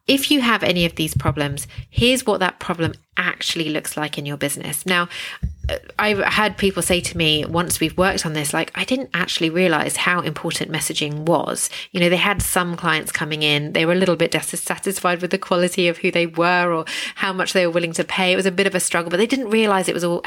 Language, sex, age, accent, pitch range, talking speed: English, female, 30-49, British, 160-200 Hz, 240 wpm